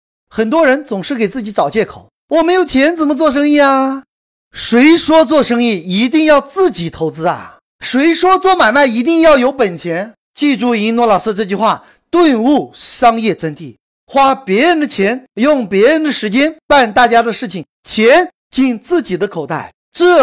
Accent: native